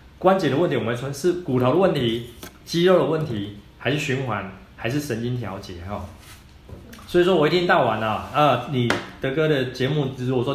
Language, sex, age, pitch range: Chinese, male, 20-39, 110-145 Hz